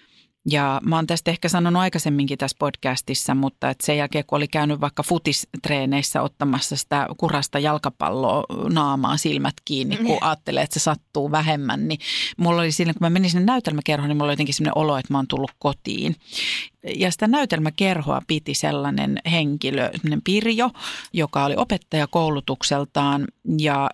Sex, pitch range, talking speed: female, 145-185 Hz, 160 wpm